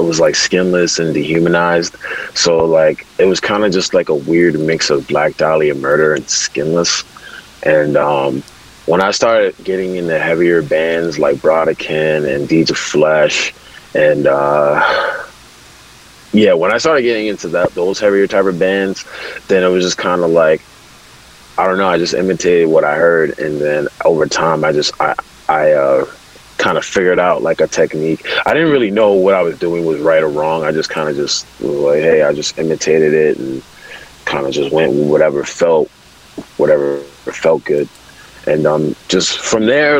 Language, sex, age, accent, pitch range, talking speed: English, male, 30-49, American, 75-90 Hz, 180 wpm